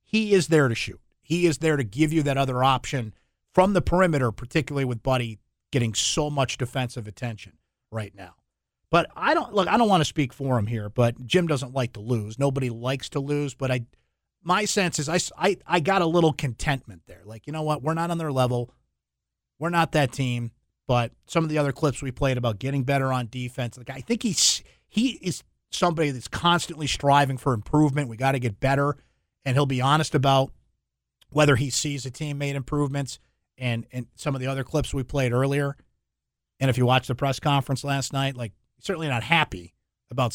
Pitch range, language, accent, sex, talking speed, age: 120-150 Hz, English, American, male, 210 wpm, 30-49